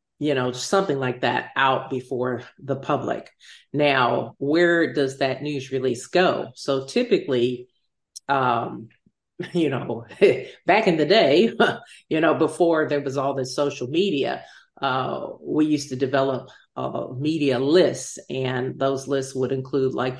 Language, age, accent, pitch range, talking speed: English, 40-59, American, 125-140 Hz, 145 wpm